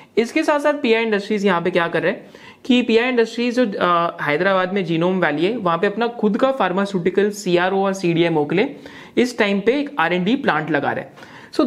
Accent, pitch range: native, 170-220 Hz